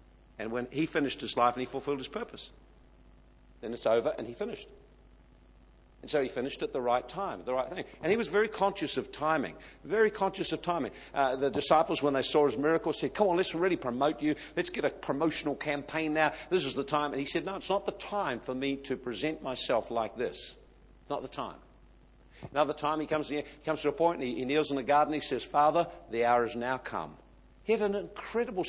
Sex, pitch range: male, 135-180 Hz